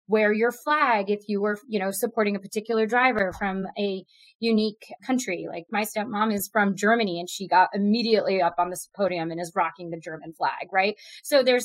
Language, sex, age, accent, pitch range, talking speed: English, female, 30-49, American, 195-230 Hz, 200 wpm